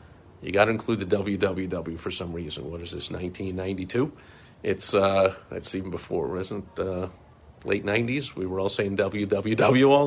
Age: 50-69